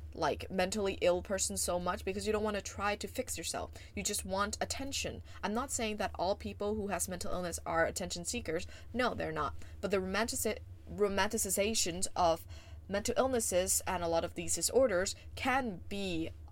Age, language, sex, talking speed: 20-39, English, female, 180 wpm